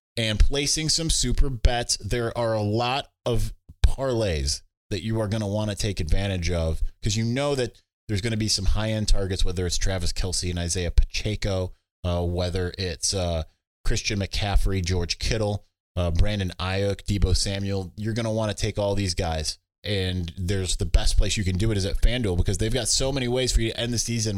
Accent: American